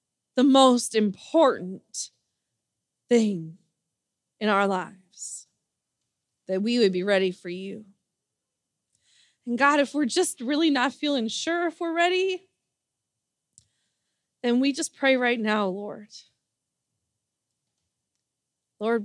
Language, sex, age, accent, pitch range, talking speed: English, female, 20-39, American, 200-265 Hz, 105 wpm